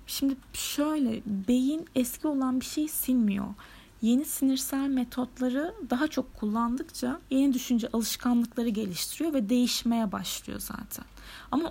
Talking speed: 120 wpm